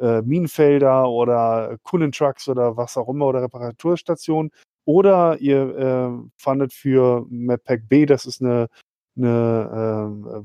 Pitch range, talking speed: 125-145 Hz, 130 wpm